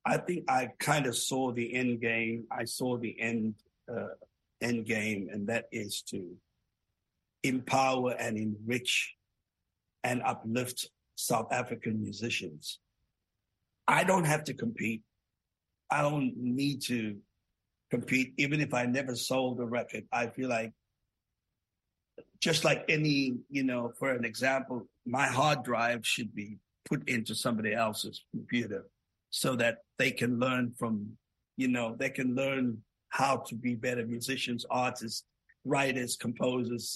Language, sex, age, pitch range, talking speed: English, male, 50-69, 115-130 Hz, 140 wpm